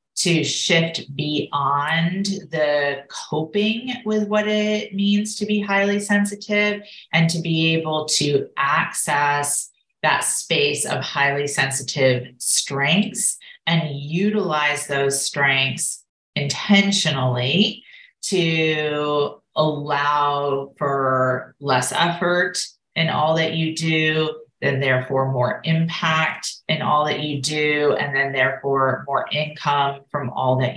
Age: 30-49